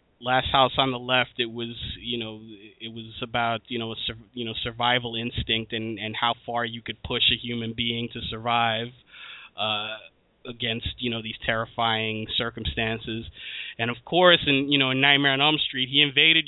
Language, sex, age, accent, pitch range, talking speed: English, male, 20-39, American, 115-135 Hz, 185 wpm